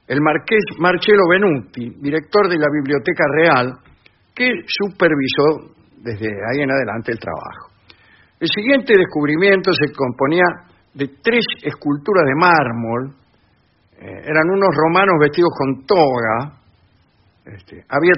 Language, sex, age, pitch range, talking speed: English, male, 60-79, 115-185 Hz, 115 wpm